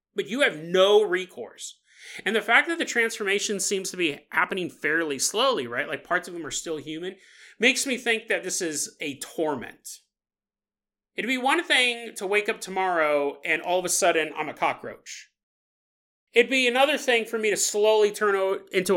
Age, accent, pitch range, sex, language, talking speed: 30-49, American, 155-245 Hz, male, English, 185 wpm